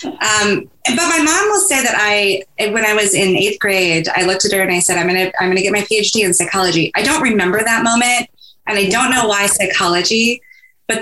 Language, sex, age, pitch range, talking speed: English, female, 20-39, 185-235 Hz, 240 wpm